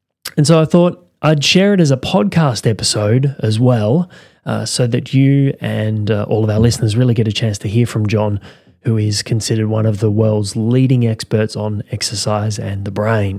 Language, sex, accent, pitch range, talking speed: English, male, Australian, 110-140 Hz, 200 wpm